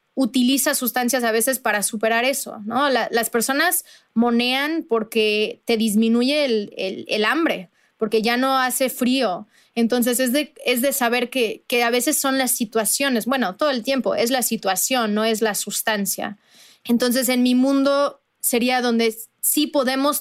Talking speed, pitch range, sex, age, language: 165 wpm, 225-265 Hz, female, 20-39, Spanish